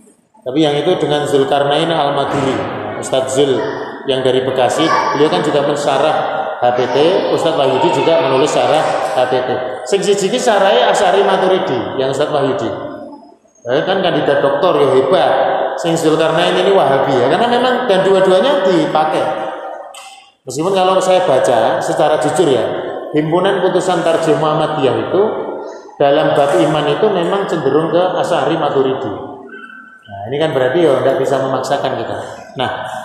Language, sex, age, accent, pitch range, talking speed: Indonesian, male, 30-49, native, 135-185 Hz, 135 wpm